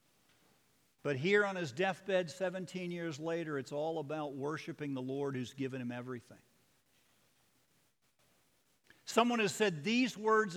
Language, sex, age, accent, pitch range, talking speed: English, male, 50-69, American, 145-215 Hz, 130 wpm